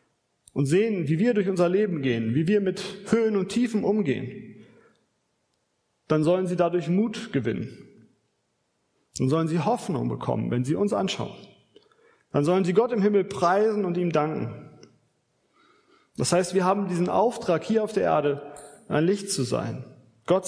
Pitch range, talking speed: 150-190 Hz, 160 wpm